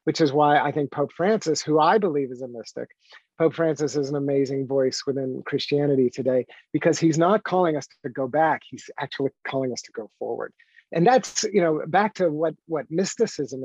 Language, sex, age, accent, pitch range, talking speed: English, male, 50-69, American, 140-175 Hz, 200 wpm